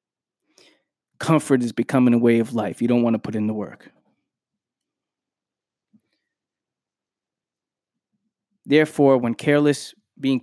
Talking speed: 110 wpm